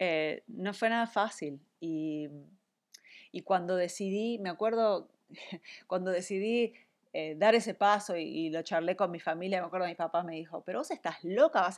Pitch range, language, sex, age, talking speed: 175-225 Hz, Spanish, female, 30-49, 185 wpm